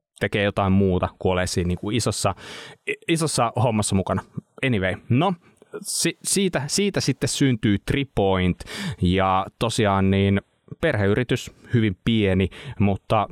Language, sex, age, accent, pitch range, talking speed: Finnish, male, 20-39, native, 95-135 Hz, 115 wpm